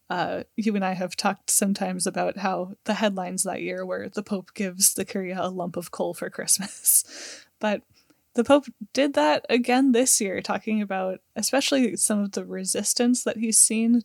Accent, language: American, English